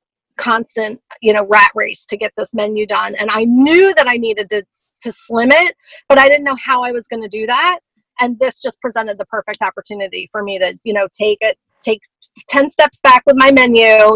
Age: 30-49